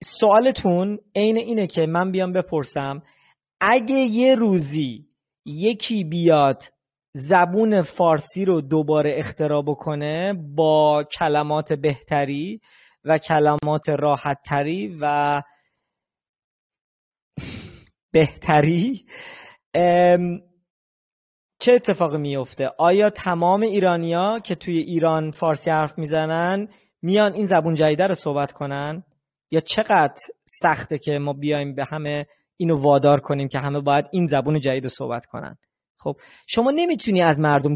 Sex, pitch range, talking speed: male, 145-200 Hz, 110 wpm